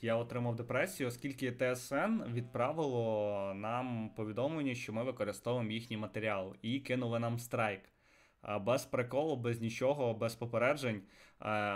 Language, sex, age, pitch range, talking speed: Ukrainian, male, 20-39, 110-130 Hz, 115 wpm